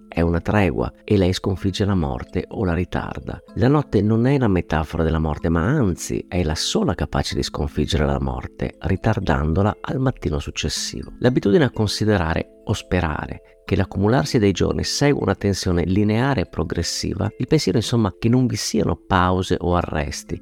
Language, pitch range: Italian, 85-120 Hz